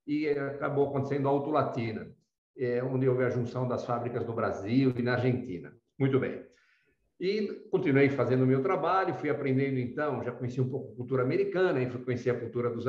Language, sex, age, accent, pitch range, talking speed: Portuguese, male, 60-79, Brazilian, 130-185 Hz, 175 wpm